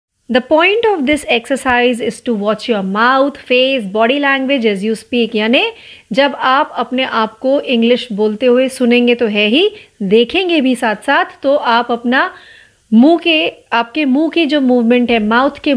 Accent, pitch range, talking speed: native, 230-290 Hz, 130 wpm